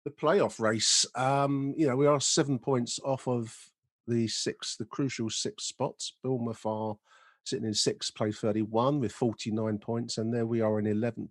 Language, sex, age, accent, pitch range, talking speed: English, male, 40-59, British, 105-130 Hz, 180 wpm